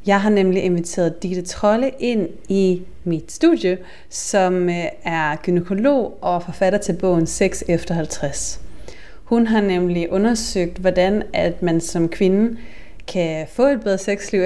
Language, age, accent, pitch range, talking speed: Danish, 30-49, native, 175-215 Hz, 135 wpm